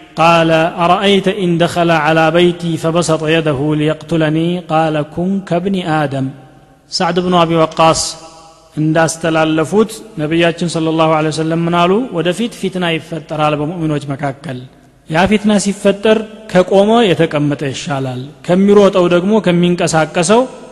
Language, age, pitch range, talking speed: Amharic, 30-49, 155-180 Hz, 110 wpm